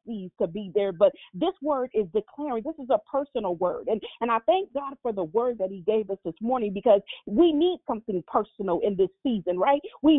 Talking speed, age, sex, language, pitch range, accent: 220 wpm, 40-59, female, English, 225-290 Hz, American